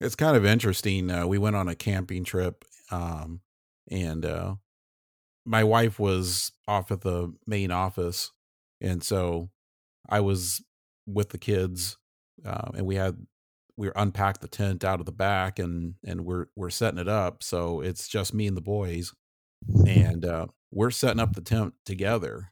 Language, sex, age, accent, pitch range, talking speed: English, male, 50-69, American, 90-110 Hz, 170 wpm